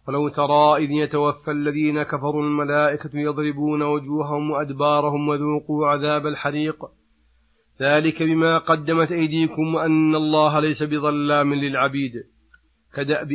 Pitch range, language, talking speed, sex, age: 145-160 Hz, Arabic, 105 wpm, male, 40-59